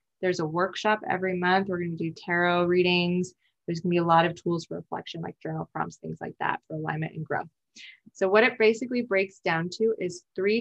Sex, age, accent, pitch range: female, 20-39, American, 175-200 Hz